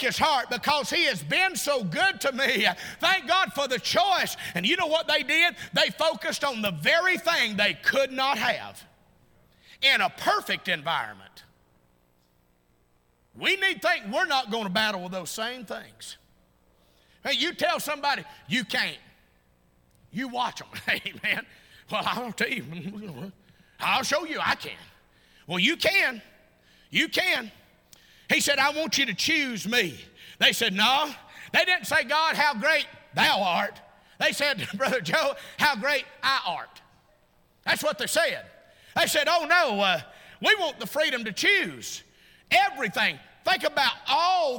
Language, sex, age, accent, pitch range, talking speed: English, male, 50-69, American, 195-315 Hz, 160 wpm